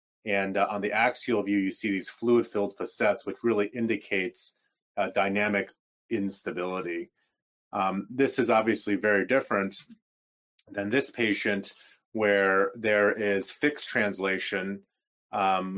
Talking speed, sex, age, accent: 120 wpm, male, 30-49, American